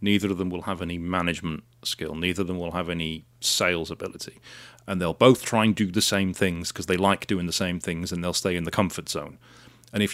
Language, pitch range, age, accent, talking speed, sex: English, 95-120 Hz, 30-49, British, 245 wpm, male